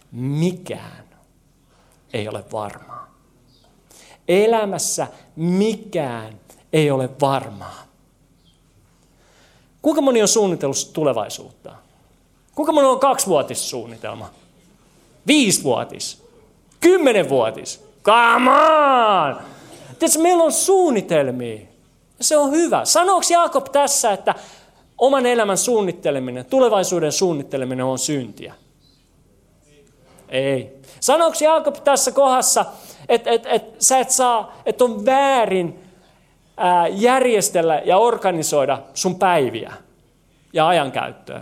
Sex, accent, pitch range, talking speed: male, native, 175-275 Hz, 90 wpm